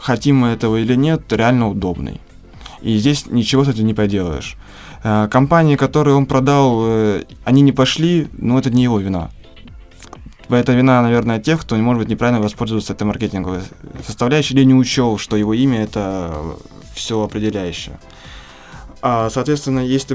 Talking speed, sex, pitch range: 150 wpm, male, 105-130 Hz